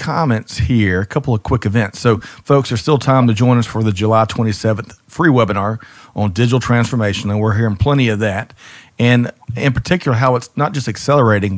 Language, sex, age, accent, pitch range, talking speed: English, male, 40-59, American, 105-120 Hz, 195 wpm